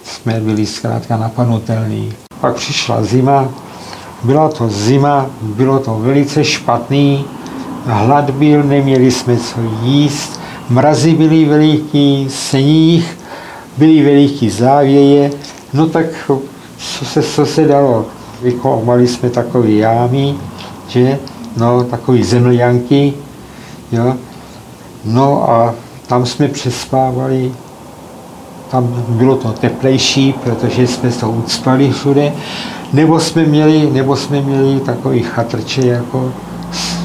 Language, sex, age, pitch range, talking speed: Slovak, male, 60-79, 115-140 Hz, 100 wpm